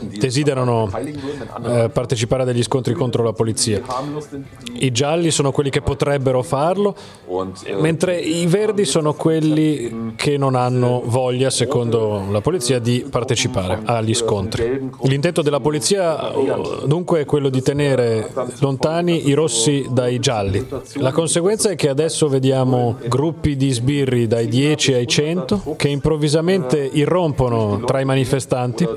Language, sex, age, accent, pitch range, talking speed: Italian, male, 30-49, native, 125-150 Hz, 135 wpm